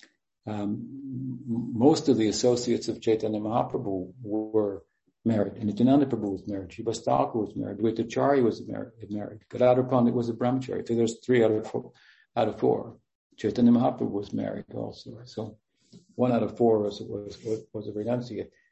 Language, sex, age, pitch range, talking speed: English, male, 60-79, 105-125 Hz, 155 wpm